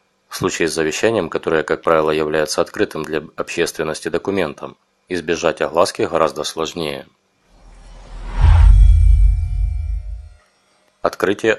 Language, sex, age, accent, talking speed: Russian, male, 30-49, native, 90 wpm